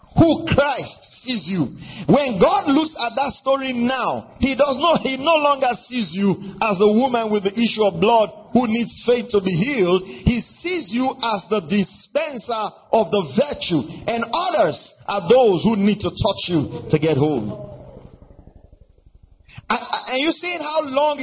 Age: 40-59